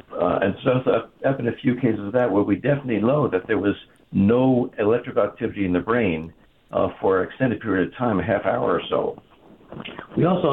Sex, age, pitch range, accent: male, 60-79, 100-120 Hz, American